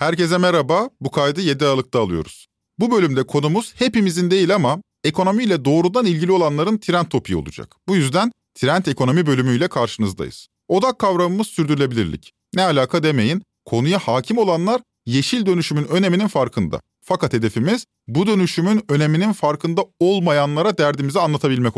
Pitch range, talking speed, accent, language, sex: 140-200 Hz, 130 wpm, native, Turkish, male